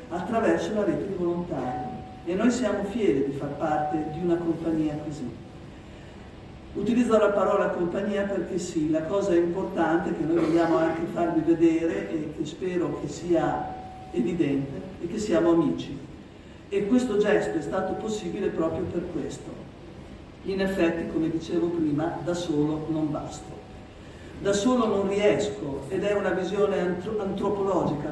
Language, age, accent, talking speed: Italian, 50-69, native, 145 wpm